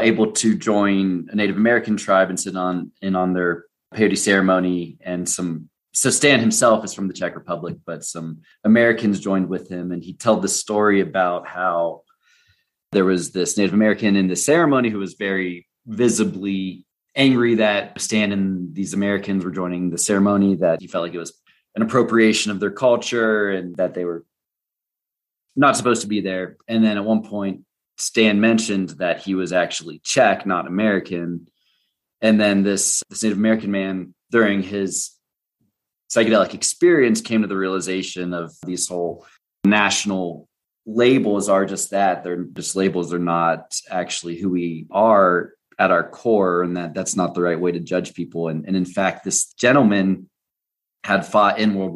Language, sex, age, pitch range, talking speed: English, male, 30-49, 90-105 Hz, 170 wpm